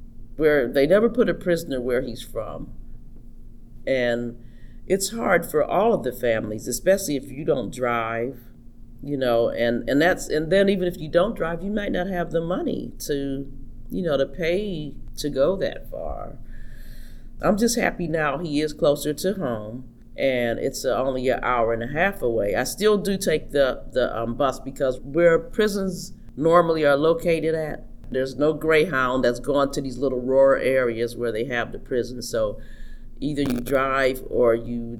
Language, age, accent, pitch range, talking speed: English, 40-59, American, 115-155 Hz, 175 wpm